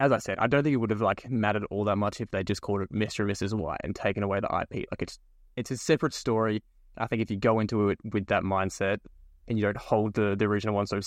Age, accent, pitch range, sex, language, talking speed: 20-39, Australian, 100-125 Hz, male, English, 300 wpm